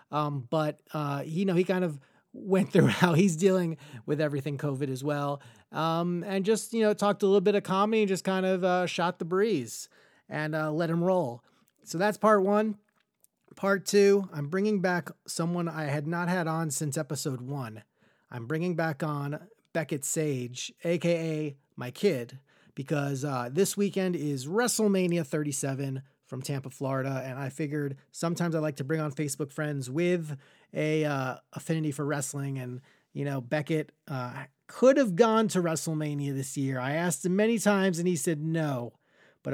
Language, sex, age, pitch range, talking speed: English, male, 30-49, 140-185 Hz, 180 wpm